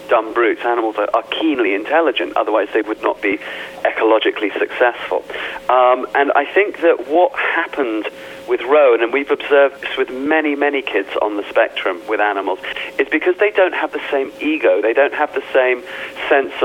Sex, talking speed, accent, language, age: male, 175 wpm, British, English, 40-59